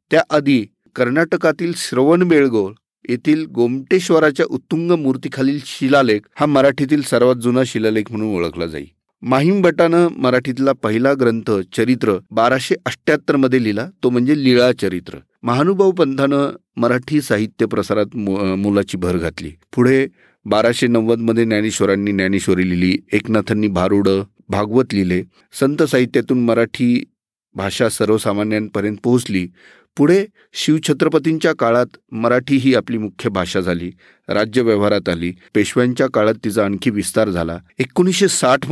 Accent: native